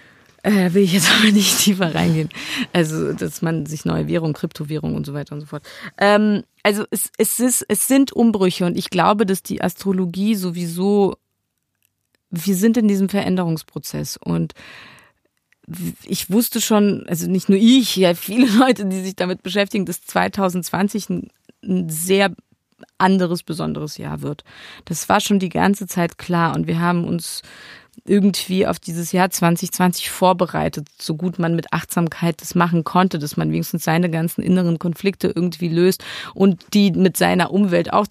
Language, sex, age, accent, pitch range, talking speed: German, female, 30-49, German, 170-200 Hz, 160 wpm